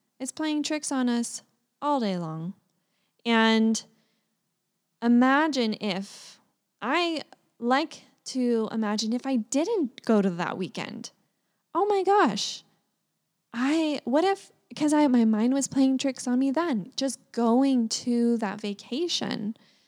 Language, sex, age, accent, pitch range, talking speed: English, female, 10-29, American, 205-255 Hz, 130 wpm